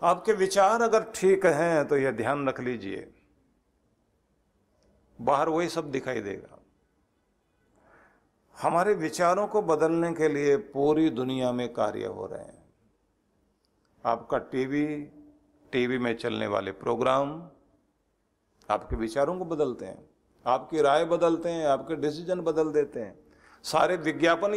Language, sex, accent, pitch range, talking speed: Hindi, male, native, 135-180 Hz, 125 wpm